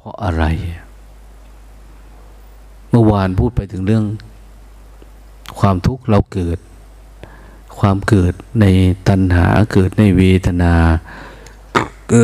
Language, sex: Thai, male